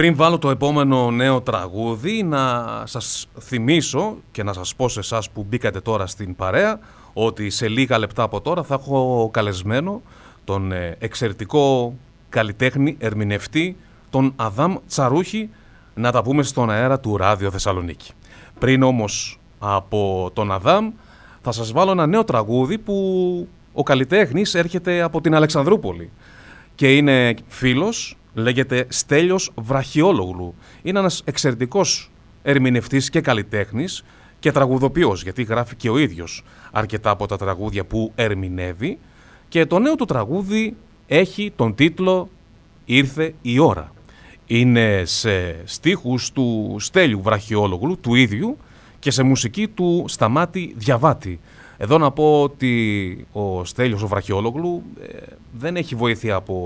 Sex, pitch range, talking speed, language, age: male, 105-150 Hz, 130 wpm, Greek, 30-49